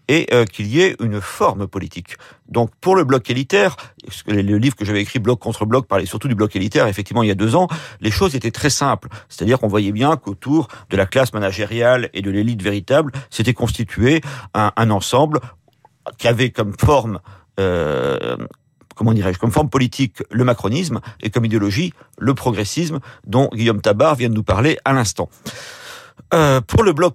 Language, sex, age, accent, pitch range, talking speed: French, male, 50-69, French, 105-135 Hz, 185 wpm